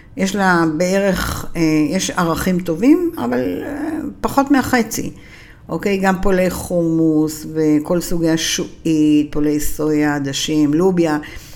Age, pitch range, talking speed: 60-79, 155-195 Hz, 105 wpm